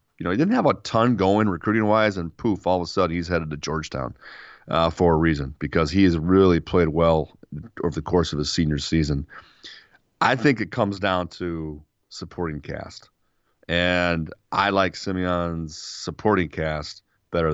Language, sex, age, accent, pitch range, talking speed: English, male, 30-49, American, 80-95 Hz, 175 wpm